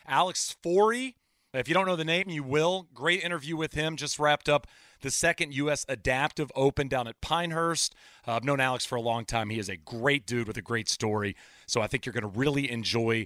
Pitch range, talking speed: 125-165 Hz, 225 wpm